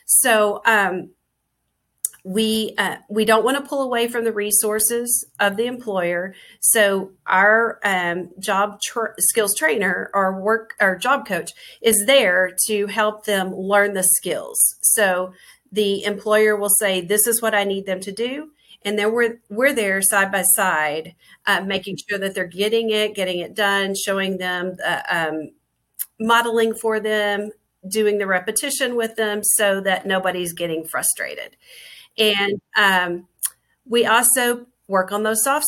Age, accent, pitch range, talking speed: 40-59, American, 195-230 Hz, 155 wpm